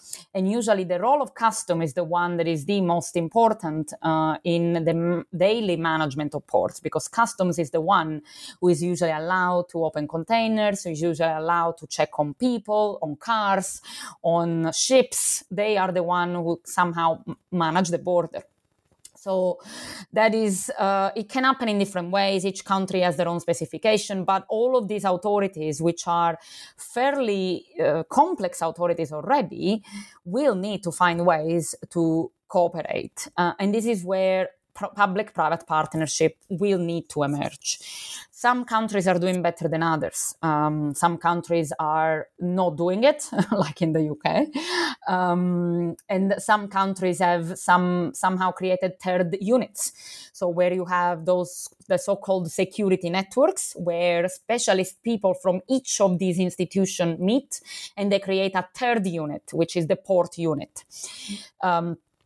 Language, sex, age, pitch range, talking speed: English, female, 20-39, 170-200 Hz, 155 wpm